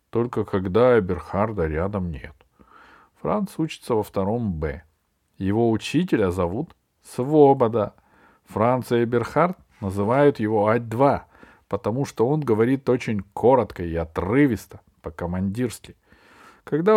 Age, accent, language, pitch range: 40-59, native, Russian, 100-155 Hz